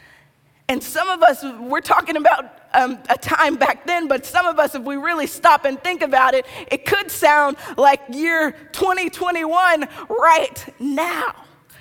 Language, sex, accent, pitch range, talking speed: English, female, American, 255-325 Hz, 165 wpm